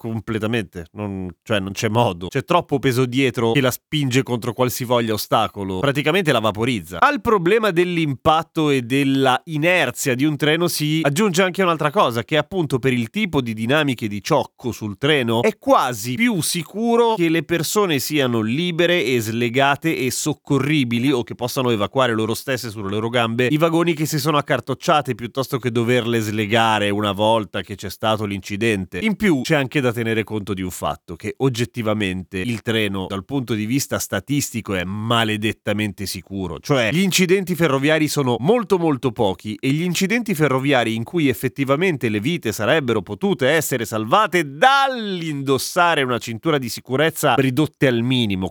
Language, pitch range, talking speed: Italian, 115-155 Hz, 165 wpm